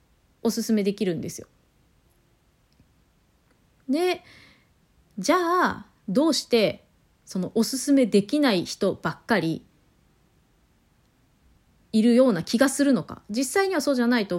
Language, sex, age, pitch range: Japanese, female, 30-49, 200-280 Hz